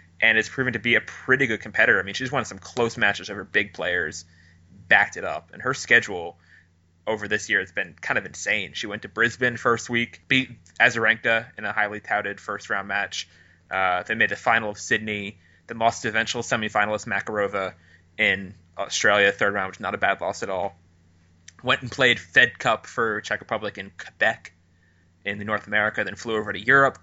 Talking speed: 200 wpm